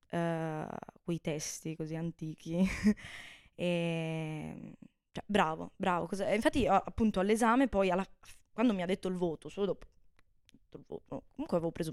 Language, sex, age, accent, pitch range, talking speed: Italian, female, 20-39, native, 180-220 Hz, 140 wpm